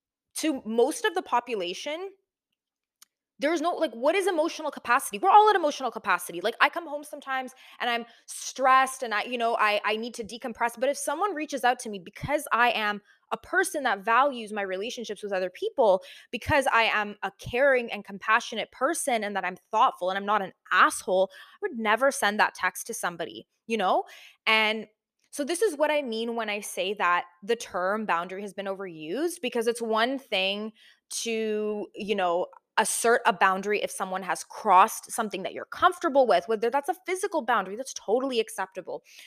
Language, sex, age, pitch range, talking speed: English, female, 20-39, 200-275 Hz, 190 wpm